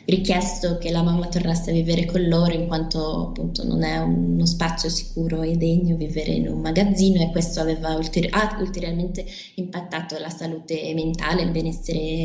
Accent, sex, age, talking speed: native, female, 20-39, 175 wpm